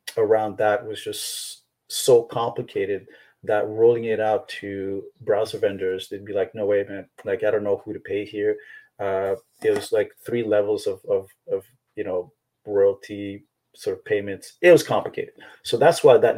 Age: 30-49